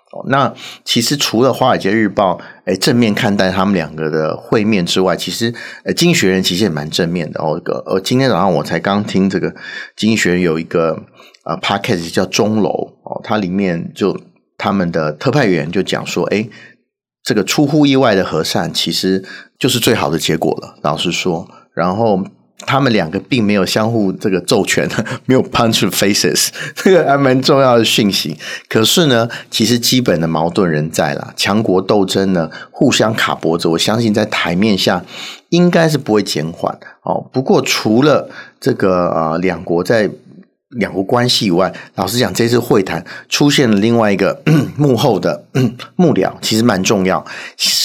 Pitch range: 90-120 Hz